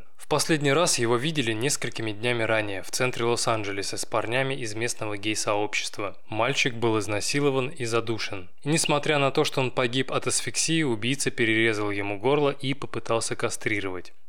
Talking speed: 150 wpm